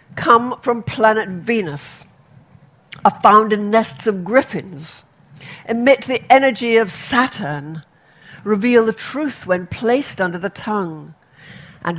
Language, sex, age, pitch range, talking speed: English, female, 60-79, 160-220 Hz, 120 wpm